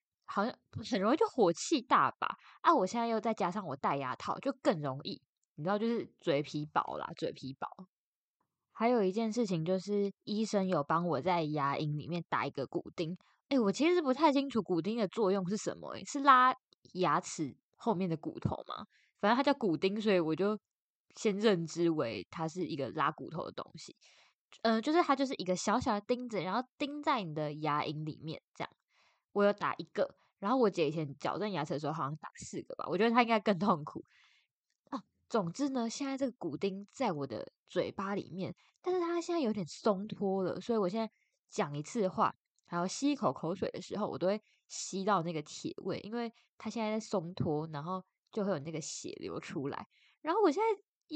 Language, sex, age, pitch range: Chinese, female, 10-29, 170-245 Hz